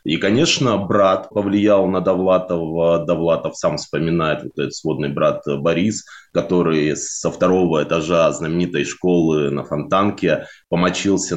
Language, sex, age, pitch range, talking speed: Russian, male, 20-39, 85-115 Hz, 110 wpm